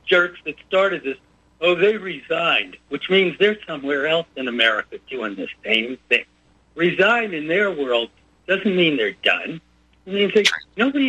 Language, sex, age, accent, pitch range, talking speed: English, male, 60-79, American, 145-200 Hz, 145 wpm